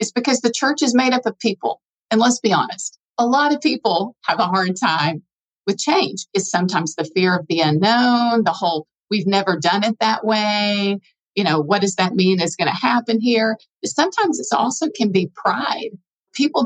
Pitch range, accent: 180-235 Hz, American